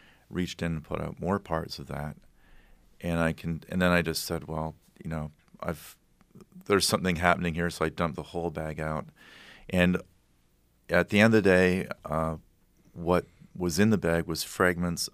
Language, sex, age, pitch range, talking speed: English, male, 40-59, 75-85 Hz, 185 wpm